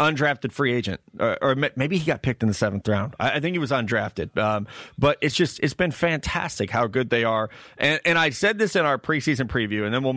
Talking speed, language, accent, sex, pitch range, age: 250 wpm, English, American, male, 120-160 Hz, 30-49